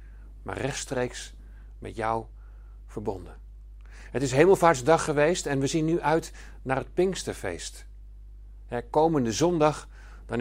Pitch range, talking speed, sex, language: 115-155 Hz, 115 wpm, male, Dutch